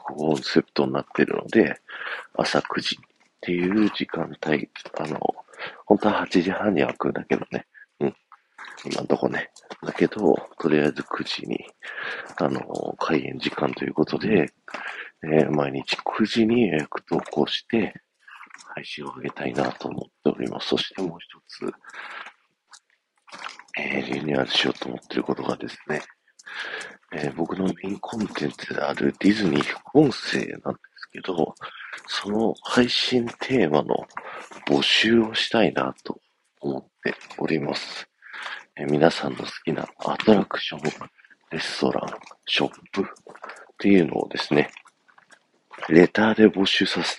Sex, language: male, Japanese